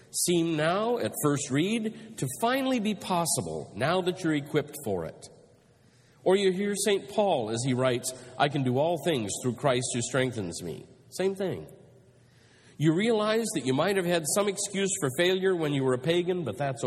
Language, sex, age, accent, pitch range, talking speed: English, male, 50-69, American, 125-175 Hz, 190 wpm